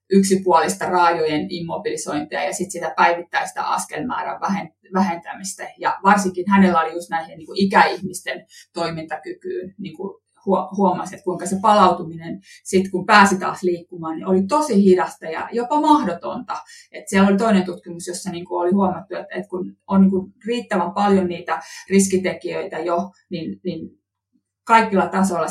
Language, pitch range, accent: Finnish, 175-195 Hz, native